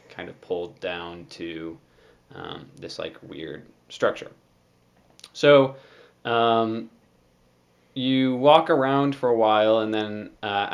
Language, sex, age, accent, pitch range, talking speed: English, male, 20-39, American, 85-110 Hz, 115 wpm